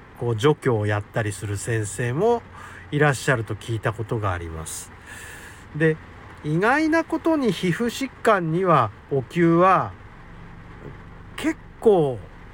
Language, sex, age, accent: Japanese, male, 50-69, native